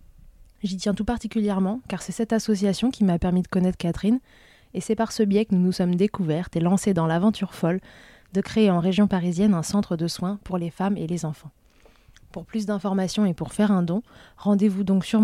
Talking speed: 215 wpm